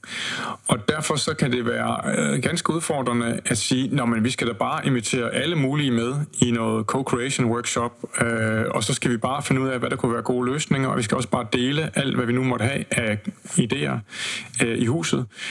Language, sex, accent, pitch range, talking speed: Danish, male, native, 115-135 Hz, 215 wpm